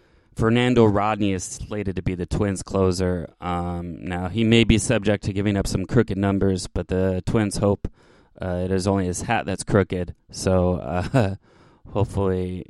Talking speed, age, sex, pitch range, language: 170 wpm, 20-39, male, 90-110 Hz, English